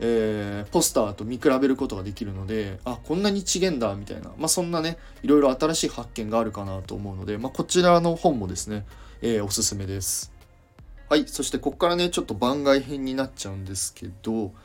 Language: Japanese